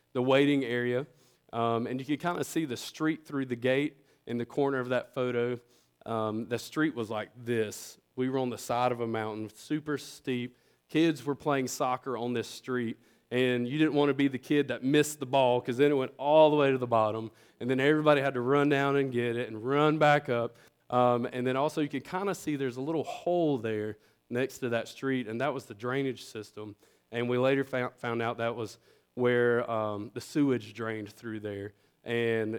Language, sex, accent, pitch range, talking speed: English, male, American, 110-135 Hz, 220 wpm